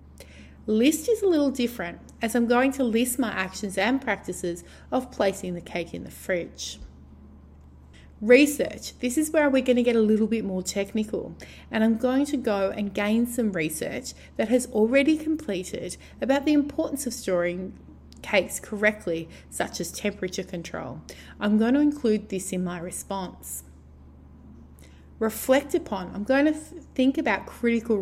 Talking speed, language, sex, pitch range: 160 wpm, English, female, 165-240 Hz